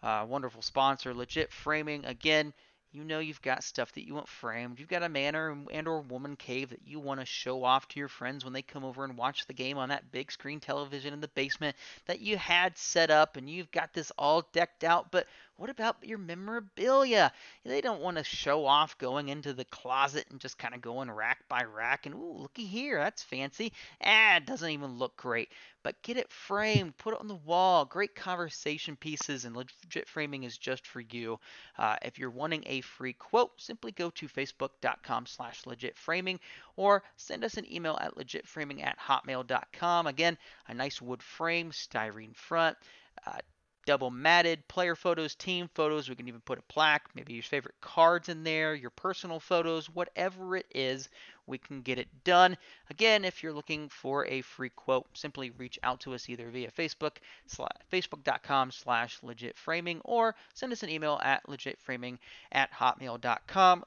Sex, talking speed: male, 190 wpm